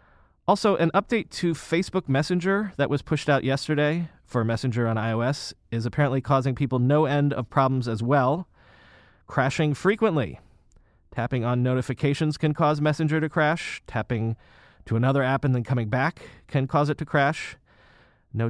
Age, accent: 30-49, American